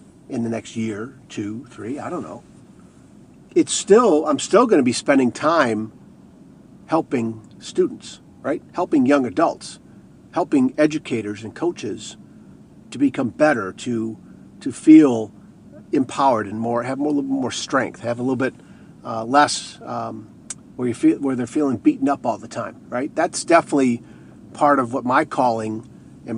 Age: 50-69